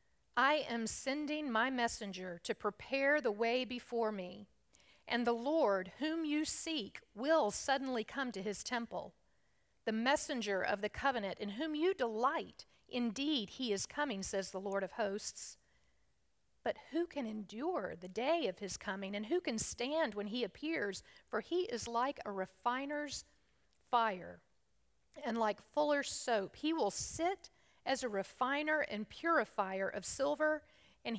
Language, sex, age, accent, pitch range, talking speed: English, female, 50-69, American, 200-280 Hz, 150 wpm